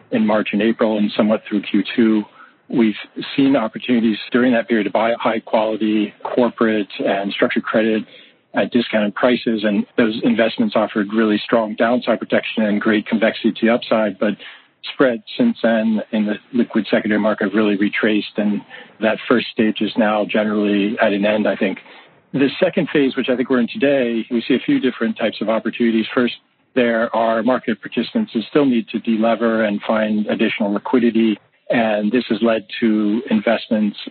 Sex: male